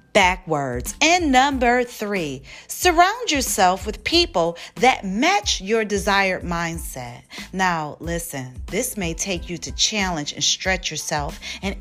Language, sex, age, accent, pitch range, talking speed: English, female, 40-59, American, 165-230 Hz, 125 wpm